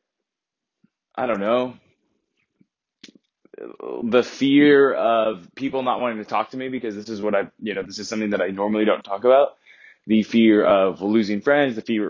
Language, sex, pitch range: English, male, 105-125 Hz